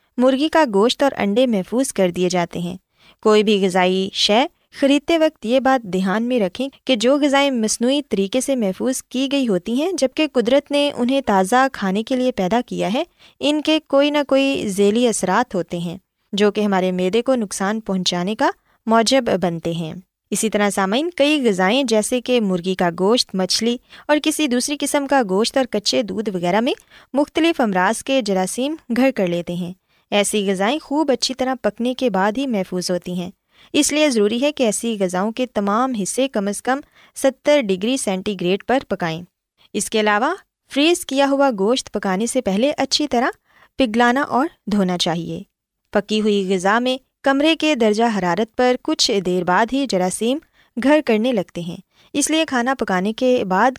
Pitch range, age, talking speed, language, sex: 195-270 Hz, 20-39, 185 wpm, Urdu, female